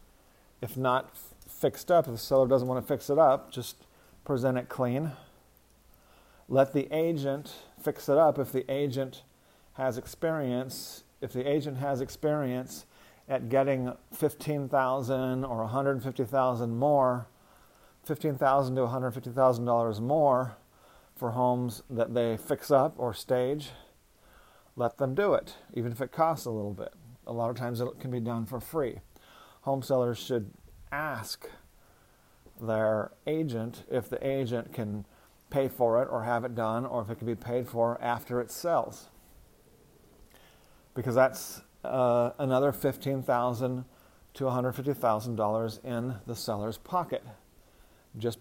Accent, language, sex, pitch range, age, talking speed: American, English, male, 115-135 Hz, 40-59, 140 wpm